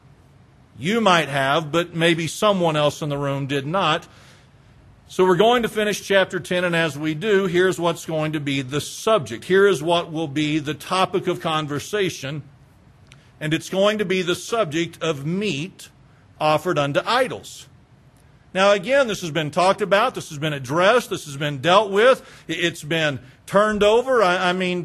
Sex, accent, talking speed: male, American, 180 wpm